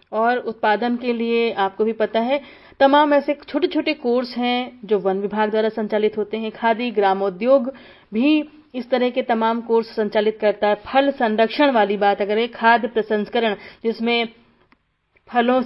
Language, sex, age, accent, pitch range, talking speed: Hindi, female, 30-49, native, 205-245 Hz, 160 wpm